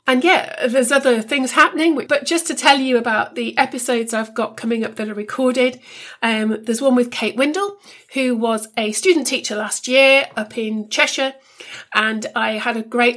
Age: 40-59